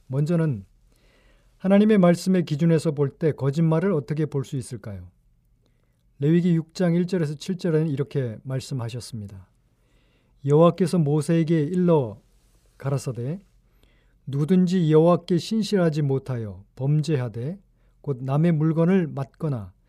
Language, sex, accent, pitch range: Korean, male, native, 135-170 Hz